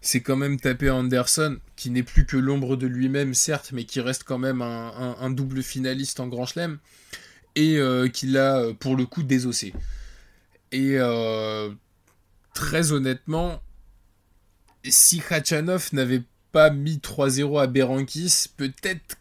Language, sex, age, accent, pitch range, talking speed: French, male, 20-39, French, 115-140 Hz, 145 wpm